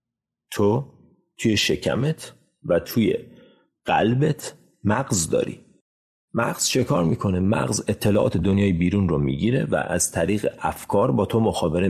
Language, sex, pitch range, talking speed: Persian, male, 90-125 Hz, 125 wpm